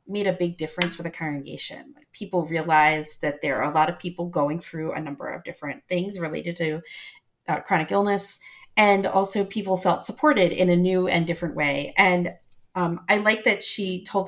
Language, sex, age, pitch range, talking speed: English, female, 30-49, 155-190 Hz, 195 wpm